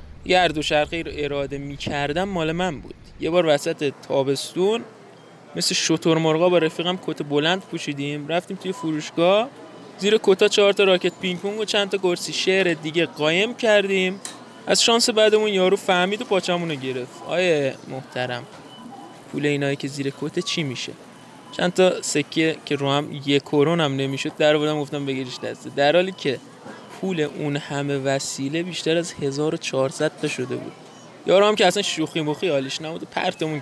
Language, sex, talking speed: Persian, male, 160 wpm